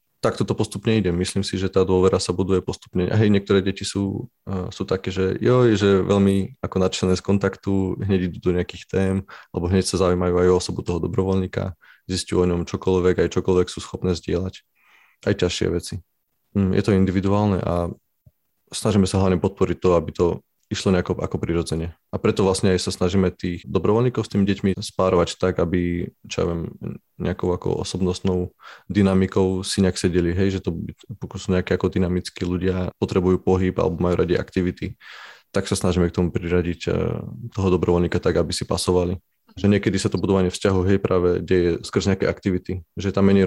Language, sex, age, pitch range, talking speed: Slovak, male, 20-39, 90-100 Hz, 190 wpm